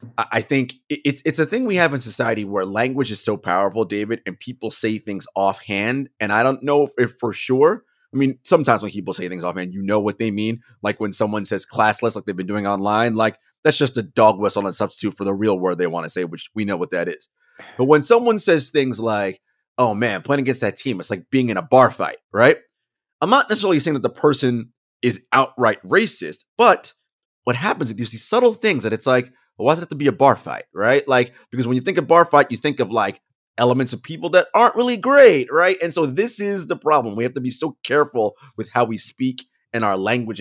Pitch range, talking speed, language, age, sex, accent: 105-145 Hz, 240 wpm, English, 30-49, male, American